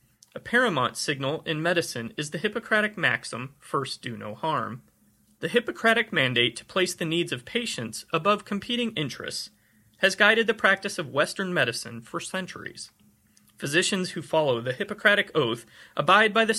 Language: English